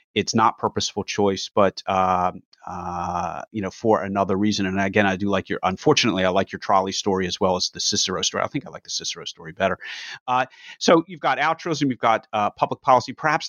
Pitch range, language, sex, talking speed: 95-115 Hz, English, male, 220 wpm